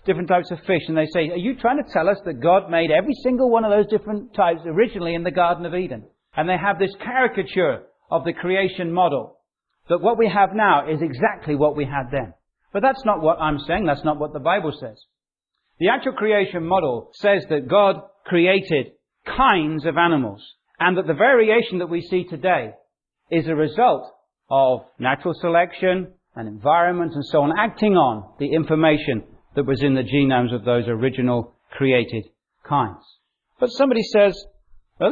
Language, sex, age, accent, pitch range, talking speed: English, male, 40-59, British, 150-200 Hz, 185 wpm